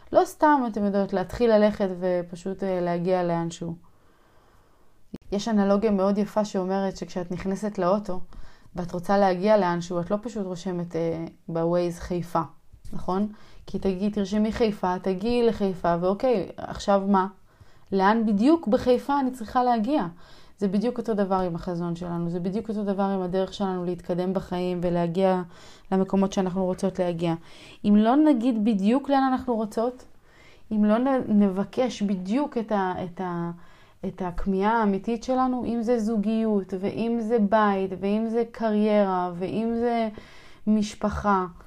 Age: 20-39